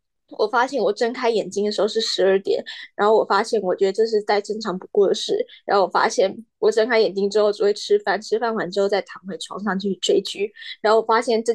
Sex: female